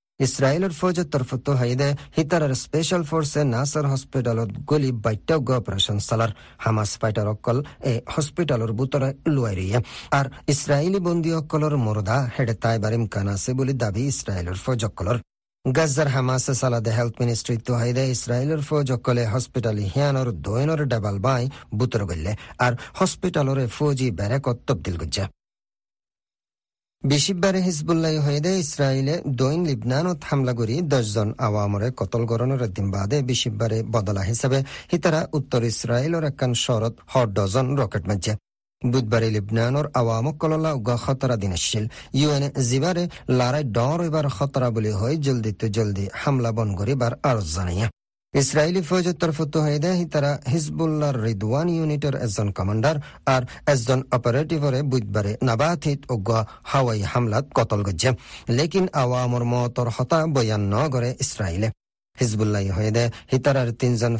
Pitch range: 115-145 Hz